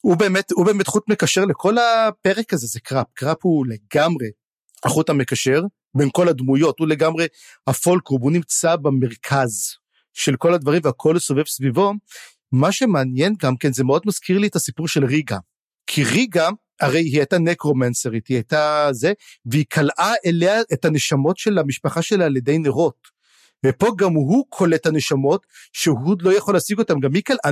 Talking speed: 165 wpm